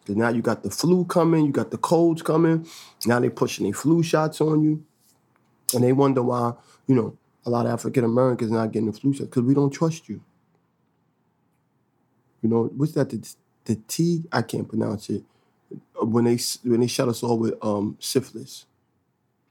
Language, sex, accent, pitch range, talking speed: English, male, American, 110-135 Hz, 190 wpm